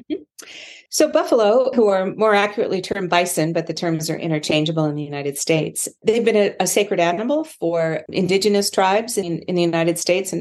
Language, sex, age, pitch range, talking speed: English, female, 50-69, 155-200 Hz, 185 wpm